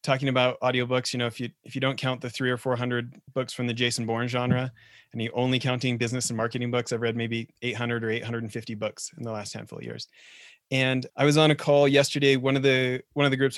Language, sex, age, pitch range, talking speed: English, male, 30-49, 115-130 Hz, 245 wpm